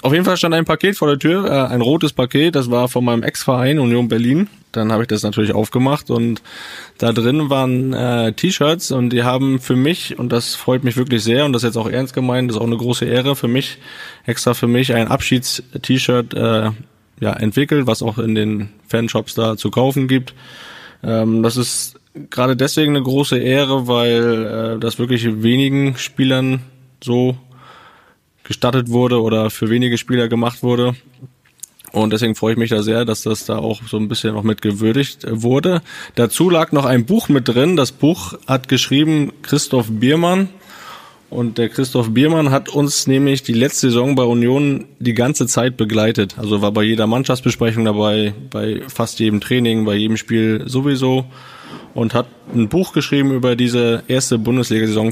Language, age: German, 20-39